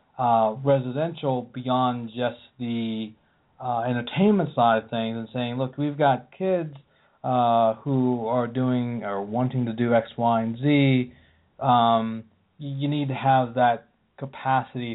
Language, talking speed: English, 140 wpm